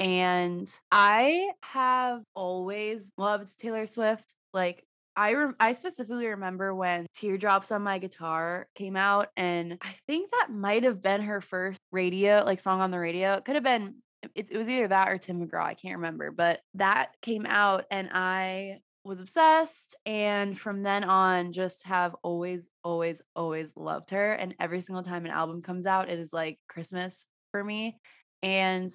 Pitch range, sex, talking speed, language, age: 180-215 Hz, female, 175 wpm, English, 20-39